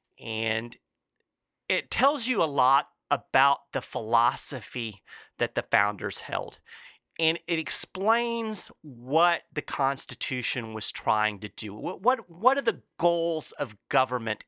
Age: 40-59